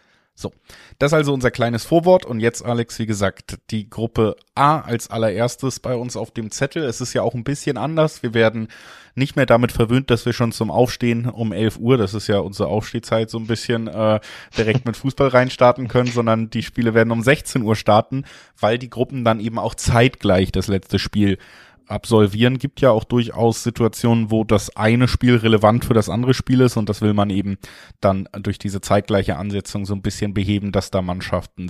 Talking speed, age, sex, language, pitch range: 205 wpm, 20-39, male, German, 100-120 Hz